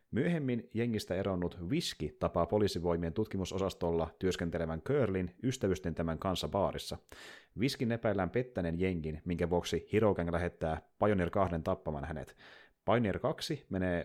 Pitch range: 85-110 Hz